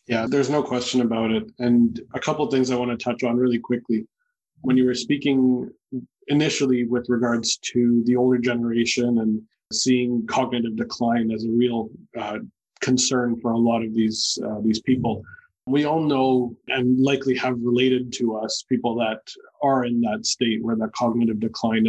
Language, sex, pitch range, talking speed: English, male, 120-140 Hz, 180 wpm